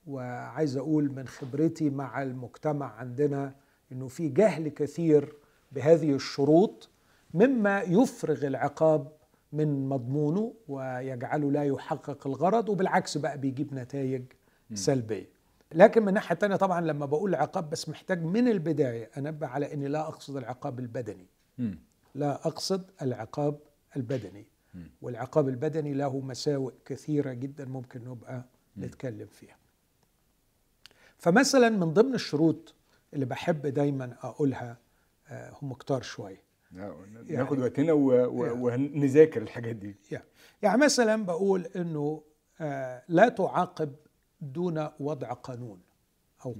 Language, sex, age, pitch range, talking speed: Arabic, male, 50-69, 130-160 Hz, 110 wpm